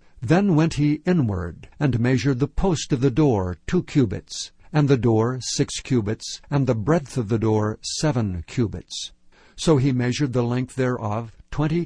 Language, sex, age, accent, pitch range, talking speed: English, male, 60-79, American, 110-145 Hz, 165 wpm